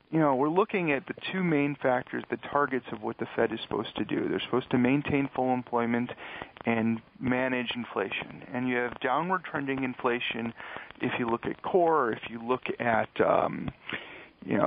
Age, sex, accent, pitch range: 40-59, male, American, 120-145 Hz